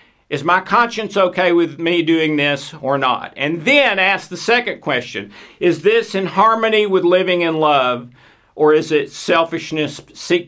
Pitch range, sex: 135-185 Hz, male